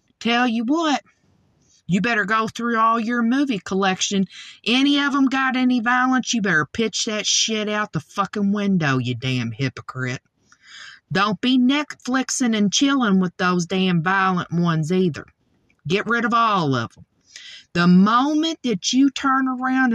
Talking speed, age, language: 155 wpm, 50-69, English